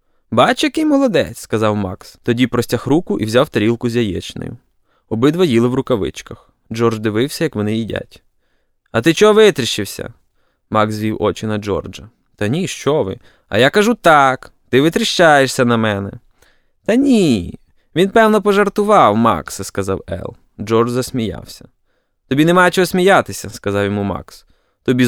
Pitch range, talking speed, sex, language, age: 105-160 Hz, 145 wpm, male, Ukrainian, 20-39